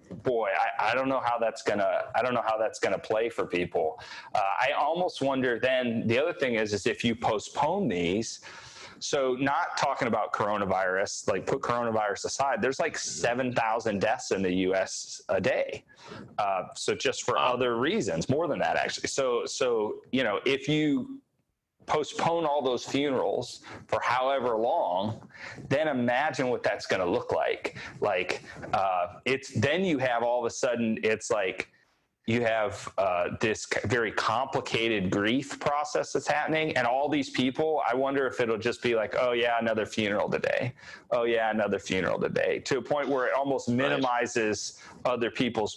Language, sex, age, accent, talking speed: English, male, 30-49, American, 175 wpm